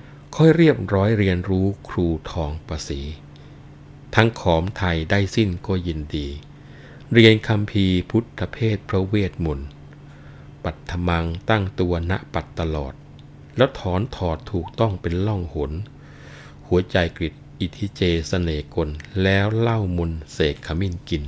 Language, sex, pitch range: Thai, male, 80-105 Hz